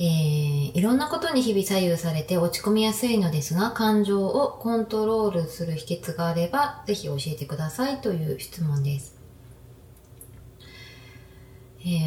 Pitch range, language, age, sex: 135-180 Hz, Japanese, 20-39, female